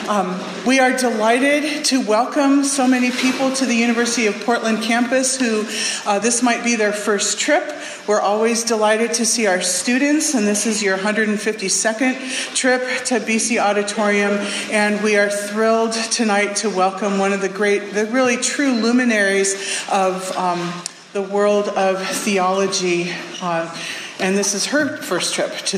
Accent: American